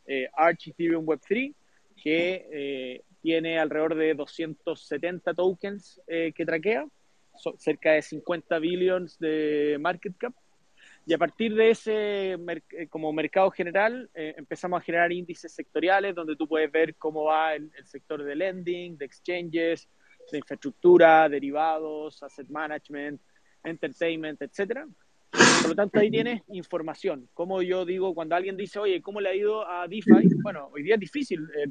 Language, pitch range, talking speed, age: Spanish, 155-195 Hz, 155 wpm, 30-49